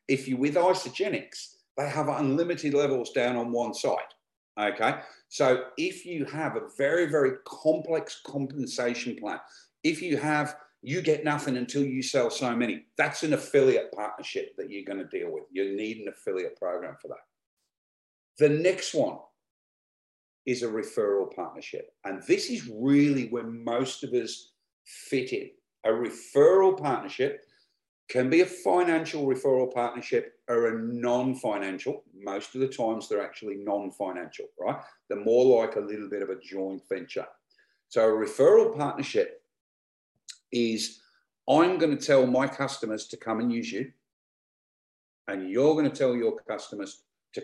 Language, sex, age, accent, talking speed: English, male, 50-69, British, 155 wpm